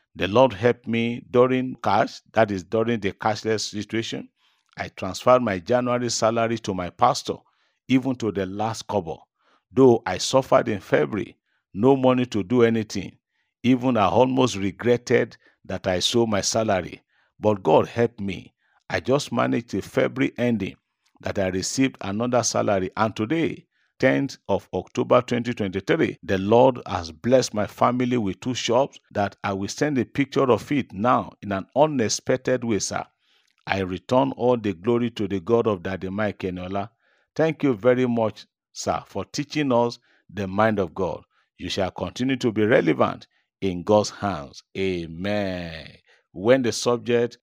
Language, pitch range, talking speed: English, 100-125 Hz, 160 wpm